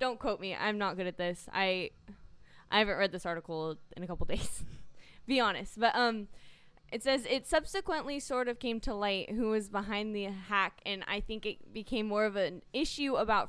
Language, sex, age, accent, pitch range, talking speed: English, female, 10-29, American, 190-260 Hz, 205 wpm